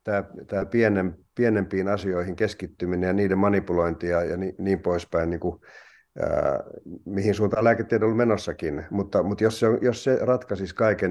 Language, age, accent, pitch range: Finnish, 50-69, native, 90-105 Hz